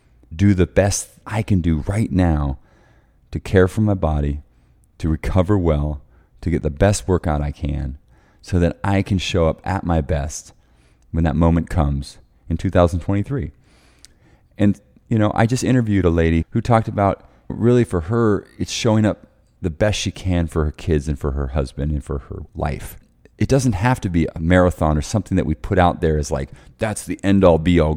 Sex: male